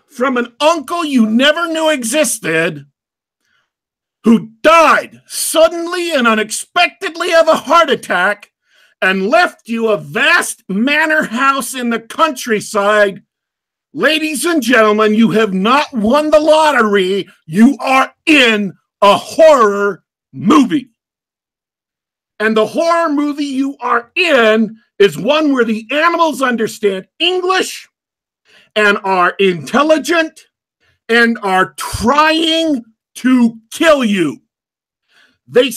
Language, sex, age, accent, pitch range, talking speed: English, male, 50-69, American, 215-310 Hz, 110 wpm